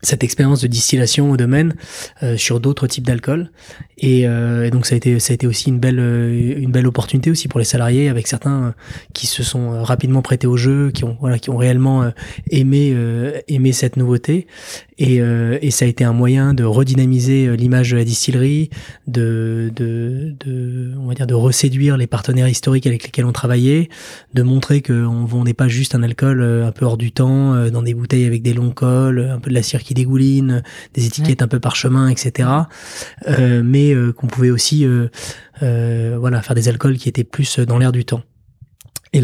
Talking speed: 205 wpm